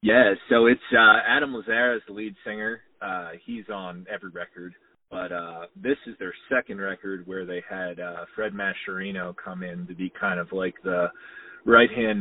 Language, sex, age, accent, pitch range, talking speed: English, male, 30-49, American, 90-105 Hz, 185 wpm